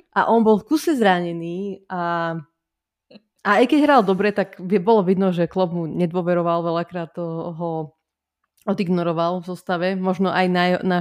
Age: 20-39